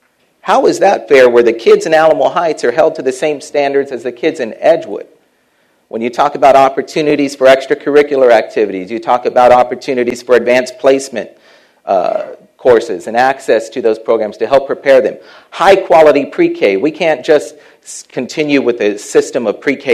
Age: 40-59